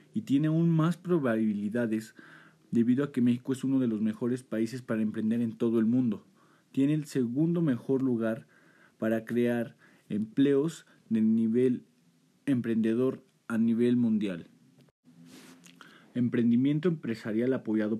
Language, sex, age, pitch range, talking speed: Spanish, male, 40-59, 115-135 Hz, 125 wpm